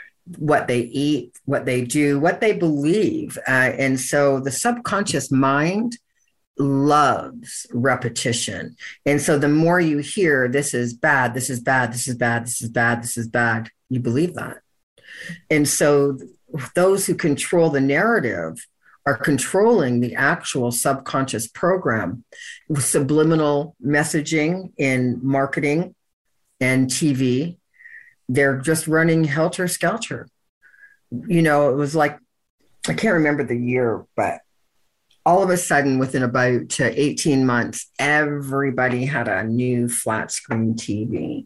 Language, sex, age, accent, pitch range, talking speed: English, female, 50-69, American, 125-155 Hz, 135 wpm